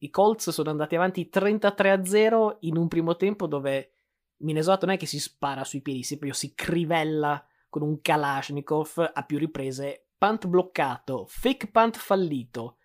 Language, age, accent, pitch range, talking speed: Italian, 20-39, native, 145-175 Hz, 160 wpm